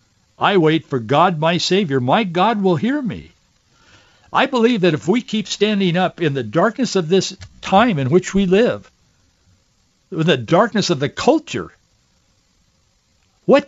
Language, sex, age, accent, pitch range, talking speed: English, male, 60-79, American, 150-210 Hz, 160 wpm